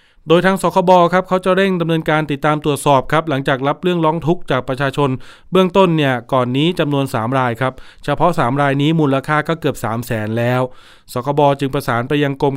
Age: 20-39